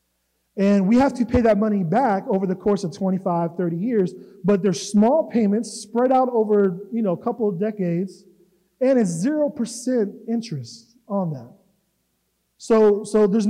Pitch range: 185-230 Hz